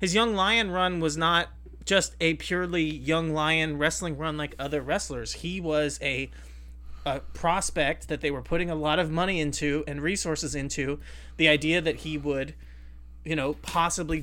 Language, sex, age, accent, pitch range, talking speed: English, male, 30-49, American, 145-180 Hz, 175 wpm